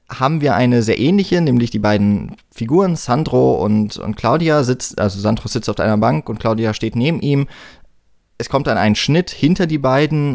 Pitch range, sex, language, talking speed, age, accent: 110-140 Hz, male, German, 190 wpm, 20-39, German